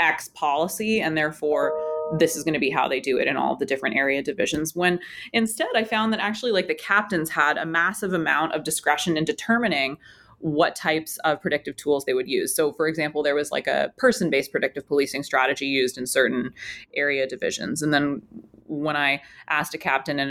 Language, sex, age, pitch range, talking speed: English, female, 20-39, 145-190 Hz, 200 wpm